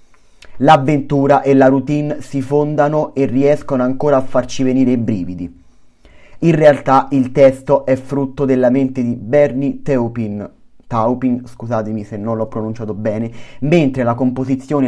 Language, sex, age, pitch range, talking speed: Italian, male, 30-49, 120-145 Hz, 140 wpm